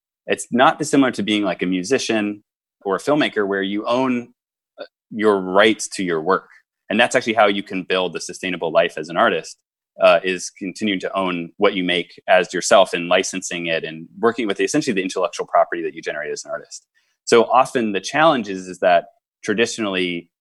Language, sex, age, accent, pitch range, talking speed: English, male, 20-39, American, 90-120 Hz, 195 wpm